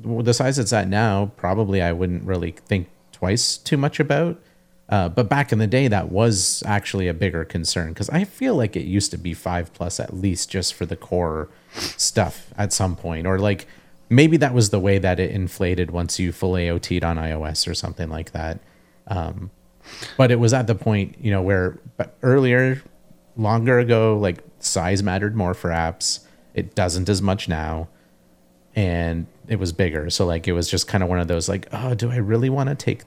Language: English